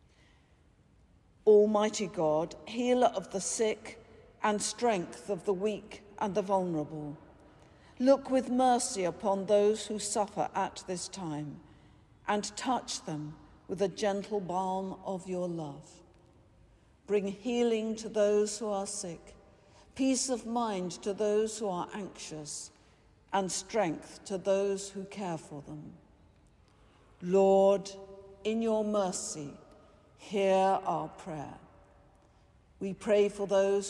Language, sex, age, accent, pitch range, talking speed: English, female, 50-69, British, 165-210 Hz, 120 wpm